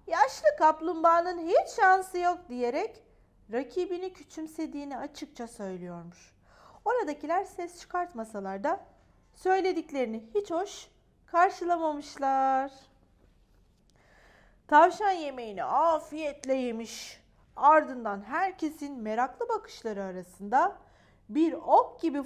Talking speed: 80 wpm